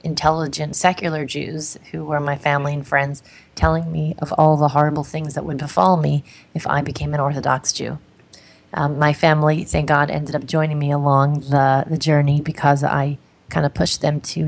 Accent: American